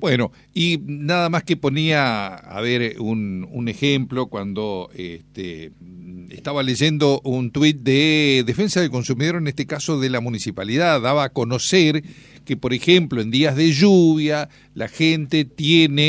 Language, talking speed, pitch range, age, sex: Spanish, 145 wpm, 125-170 Hz, 50-69, male